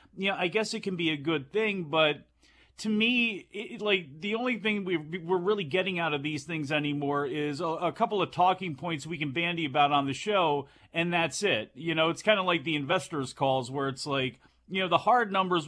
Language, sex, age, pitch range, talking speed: English, male, 40-59, 140-185 Hz, 220 wpm